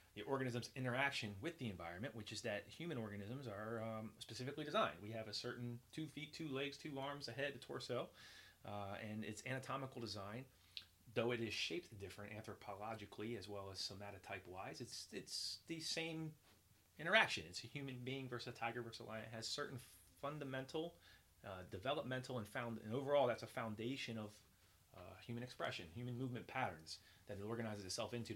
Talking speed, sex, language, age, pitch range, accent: 180 wpm, male, English, 30-49, 105-125 Hz, American